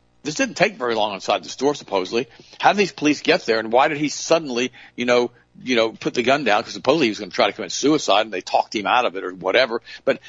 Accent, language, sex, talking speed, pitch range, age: American, English, male, 285 wpm, 105-140 Hz, 50-69